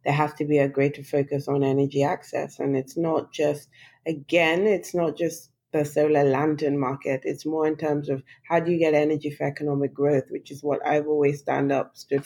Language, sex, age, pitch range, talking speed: English, female, 20-39, 140-155 Hz, 210 wpm